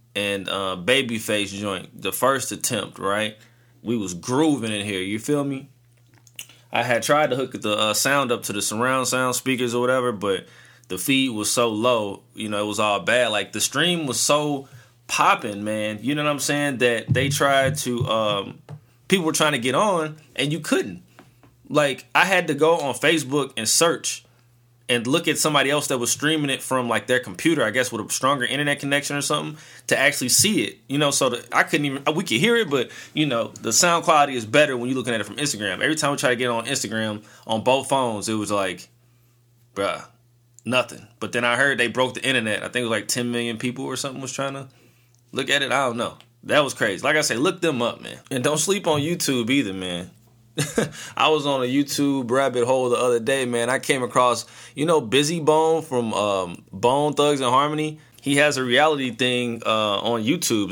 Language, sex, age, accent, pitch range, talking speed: English, male, 20-39, American, 115-140 Hz, 220 wpm